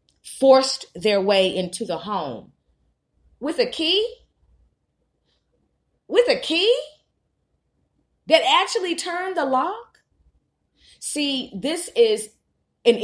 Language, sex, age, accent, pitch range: Japanese, female, 30-49, American, 170-260 Hz